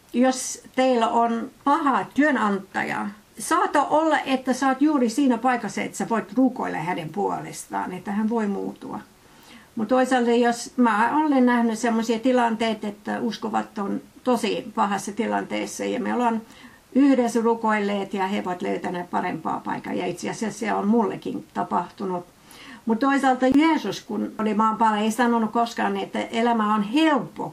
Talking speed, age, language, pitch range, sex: 145 wpm, 60-79, Finnish, 205-245 Hz, female